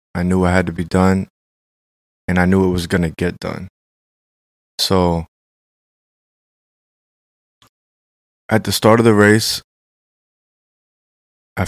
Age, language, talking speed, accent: 20-39, English, 125 wpm, American